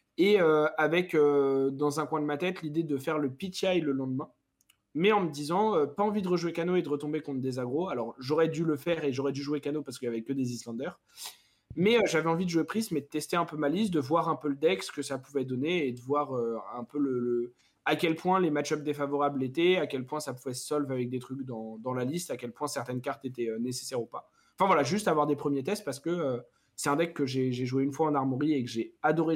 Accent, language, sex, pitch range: French, French, male, 125-155 Hz